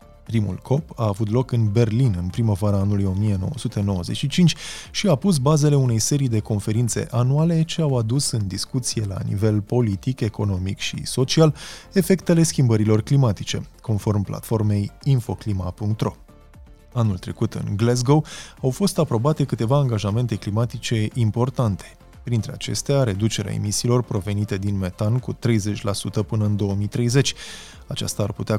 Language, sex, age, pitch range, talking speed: Romanian, male, 20-39, 100-120 Hz, 130 wpm